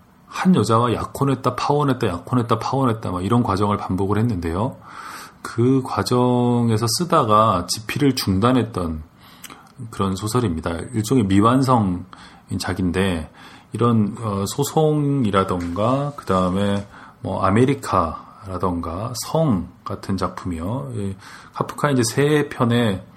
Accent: native